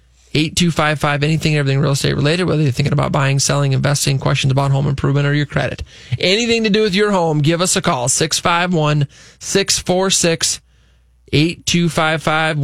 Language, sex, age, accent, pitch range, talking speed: English, male, 20-39, American, 140-180 Hz, 145 wpm